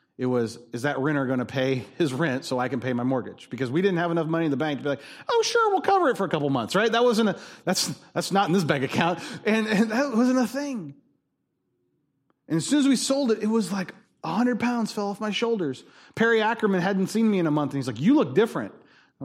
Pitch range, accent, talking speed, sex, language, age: 130-195 Hz, American, 265 wpm, male, English, 30-49